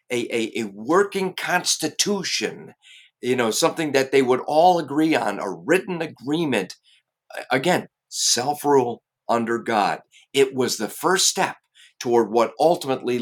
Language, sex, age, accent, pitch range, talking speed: English, male, 50-69, American, 120-160 Hz, 130 wpm